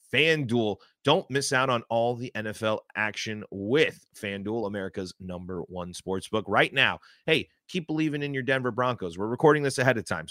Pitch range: 105-140 Hz